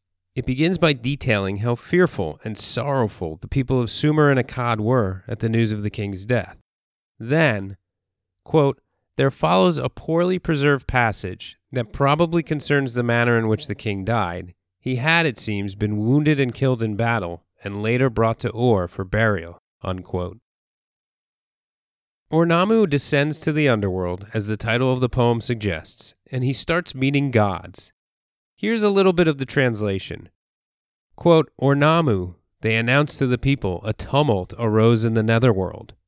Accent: American